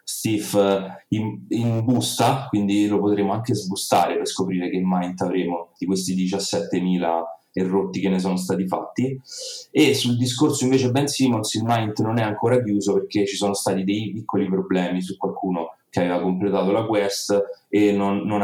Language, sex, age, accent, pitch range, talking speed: Italian, male, 30-49, native, 95-105 Hz, 175 wpm